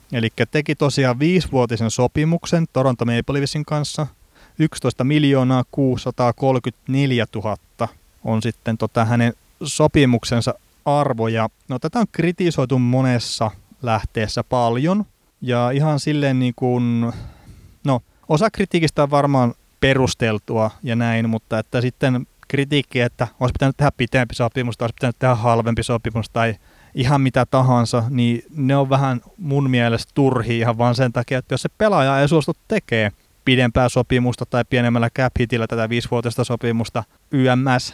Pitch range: 115-140 Hz